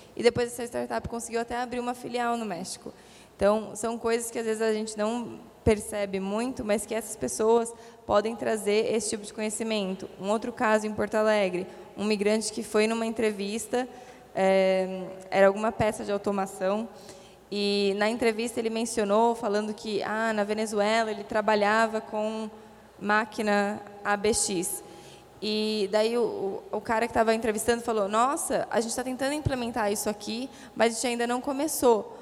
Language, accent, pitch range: English, Brazilian, 205-230 Hz